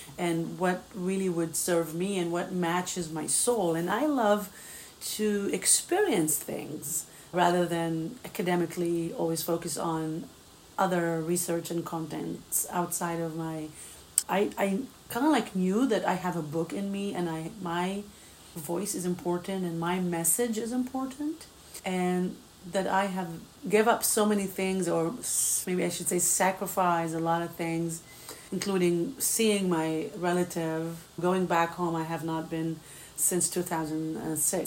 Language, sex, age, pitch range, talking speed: English, female, 30-49, 170-190 Hz, 150 wpm